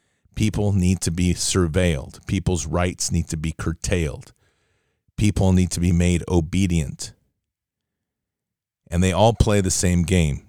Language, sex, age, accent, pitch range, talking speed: English, male, 50-69, American, 85-105 Hz, 135 wpm